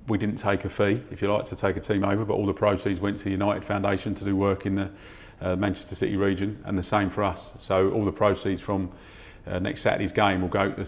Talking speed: 265 wpm